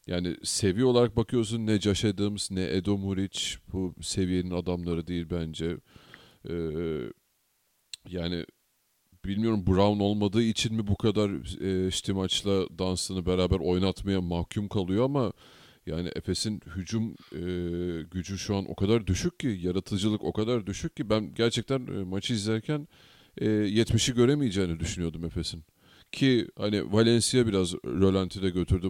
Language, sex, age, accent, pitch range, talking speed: Turkish, male, 40-59, native, 90-110 Hz, 135 wpm